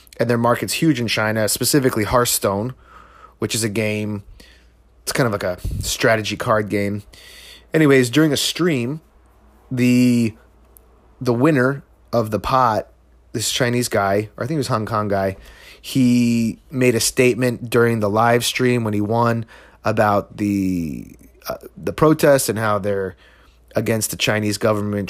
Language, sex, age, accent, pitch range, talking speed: English, male, 30-49, American, 100-120 Hz, 155 wpm